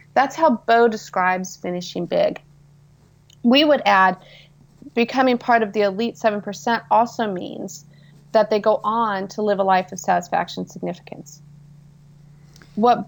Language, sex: English, female